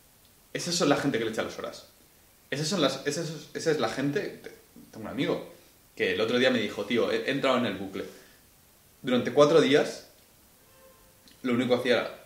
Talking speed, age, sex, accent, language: 205 wpm, 20-39, male, Spanish, Spanish